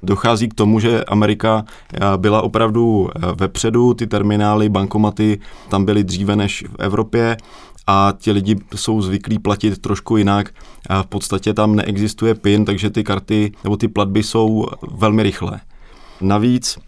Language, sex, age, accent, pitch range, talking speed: Czech, male, 20-39, native, 95-105 Hz, 140 wpm